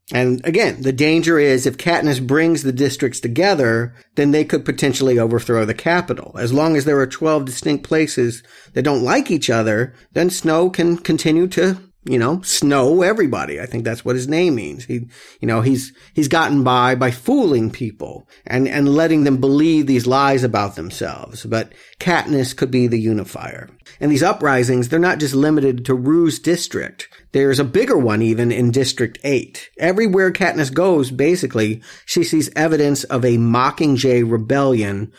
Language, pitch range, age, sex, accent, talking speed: English, 125-160 Hz, 50-69, male, American, 170 wpm